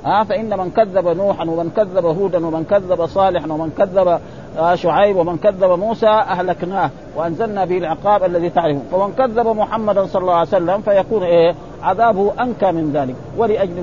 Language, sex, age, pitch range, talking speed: Arabic, male, 50-69, 175-220 Hz, 155 wpm